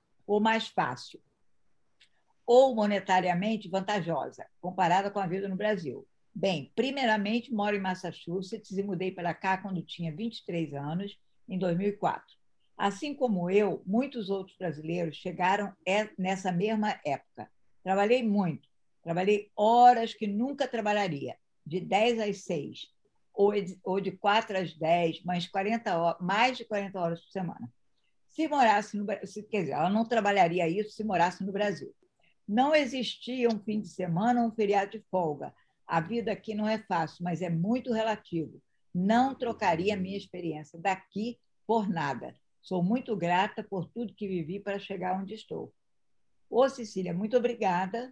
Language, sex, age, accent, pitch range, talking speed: English, female, 60-79, Brazilian, 180-220 Hz, 145 wpm